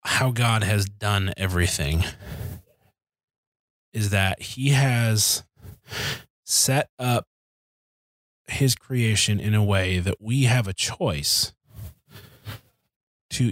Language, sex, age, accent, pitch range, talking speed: English, male, 20-39, American, 105-130 Hz, 100 wpm